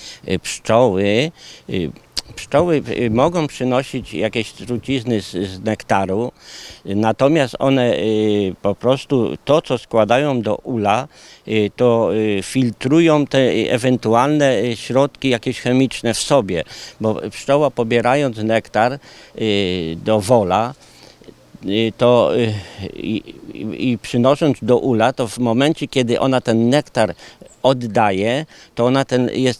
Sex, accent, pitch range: male, native, 110-130 Hz